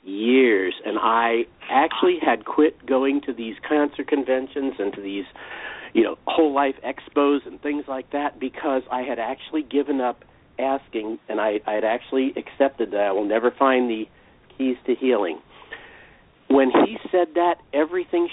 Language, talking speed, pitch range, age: English, 160 wpm, 115-145 Hz, 50-69